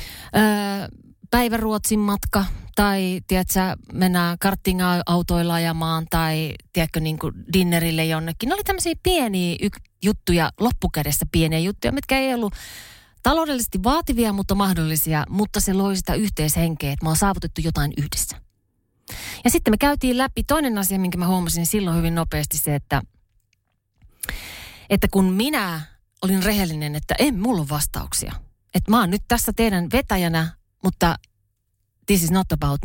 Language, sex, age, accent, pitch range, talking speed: Finnish, female, 30-49, native, 155-210 Hz, 140 wpm